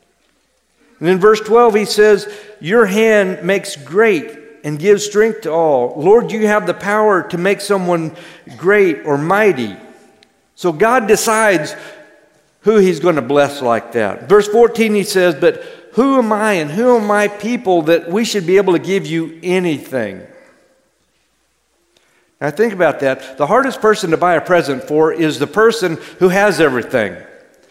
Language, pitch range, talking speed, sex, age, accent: English, 165-215 Hz, 165 wpm, male, 50-69, American